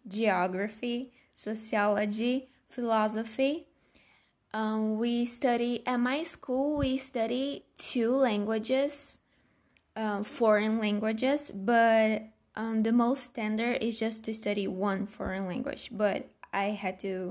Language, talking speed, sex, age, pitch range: English, 110 wpm, female, 10-29, 210-260 Hz